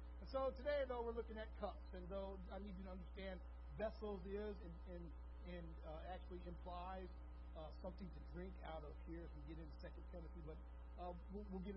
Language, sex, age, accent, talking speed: English, male, 60-79, American, 205 wpm